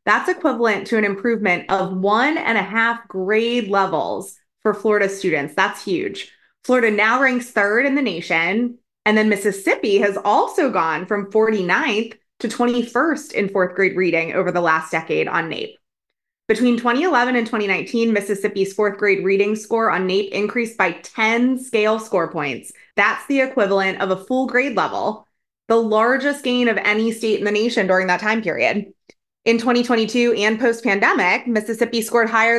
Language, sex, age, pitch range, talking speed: English, female, 20-39, 205-245 Hz, 165 wpm